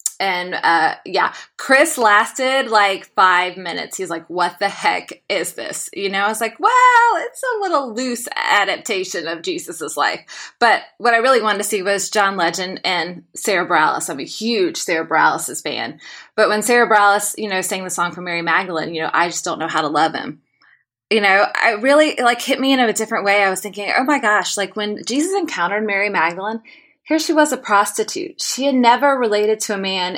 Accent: American